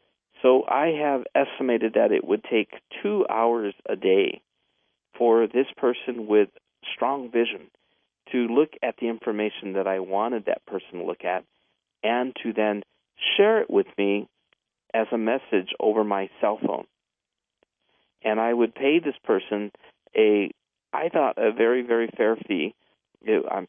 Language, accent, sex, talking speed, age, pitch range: English, American, male, 150 wpm, 50-69, 110-155 Hz